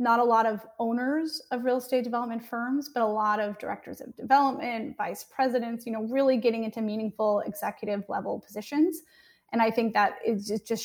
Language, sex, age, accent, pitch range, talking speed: English, female, 30-49, American, 215-255 Hz, 190 wpm